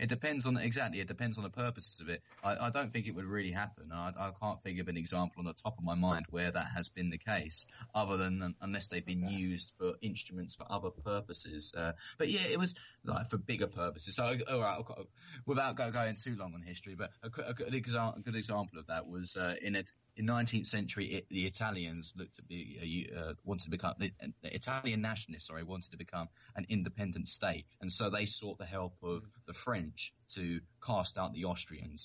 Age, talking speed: 20-39, 220 wpm